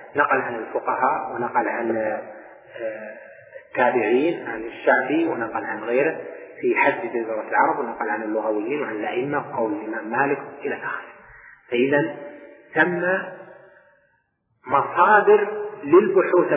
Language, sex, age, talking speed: Arabic, male, 30-49, 105 wpm